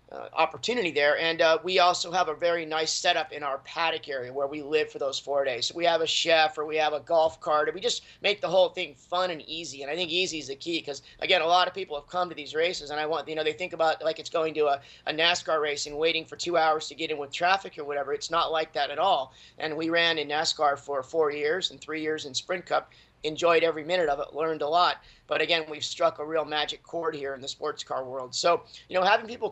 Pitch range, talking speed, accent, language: 150-175 Hz, 275 wpm, American, English